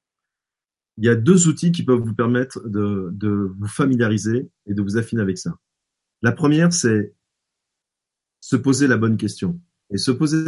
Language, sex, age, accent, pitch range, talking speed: French, male, 30-49, French, 105-145 Hz, 170 wpm